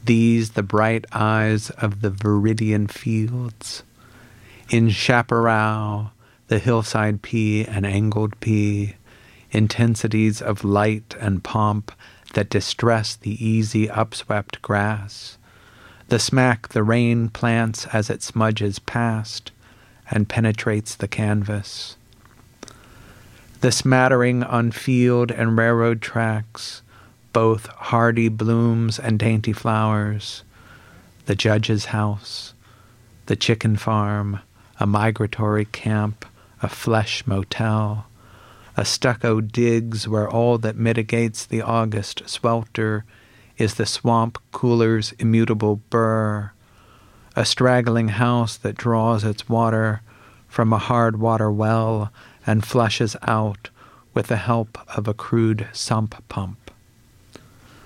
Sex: male